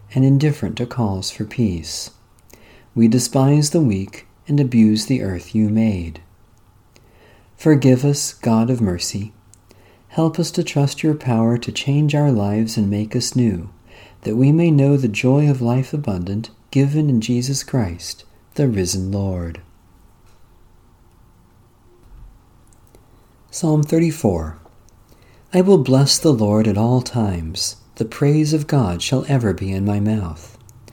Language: English